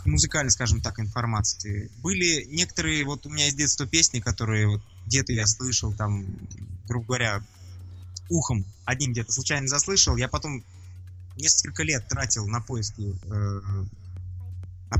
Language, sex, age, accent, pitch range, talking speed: Russian, male, 20-39, native, 100-140 Hz, 130 wpm